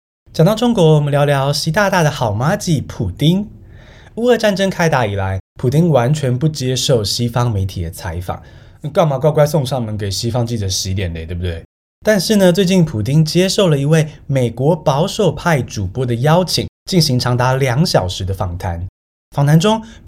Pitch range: 115-180 Hz